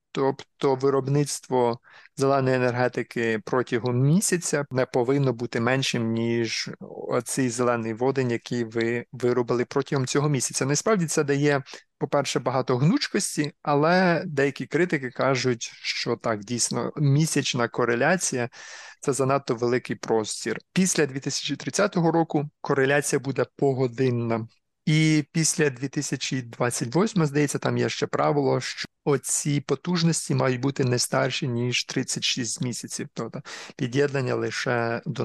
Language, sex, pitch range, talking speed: Ukrainian, male, 120-150 Hz, 115 wpm